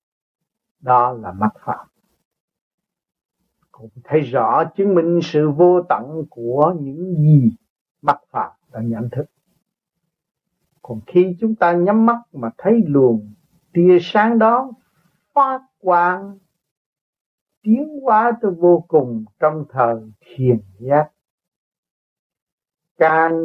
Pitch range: 150-195 Hz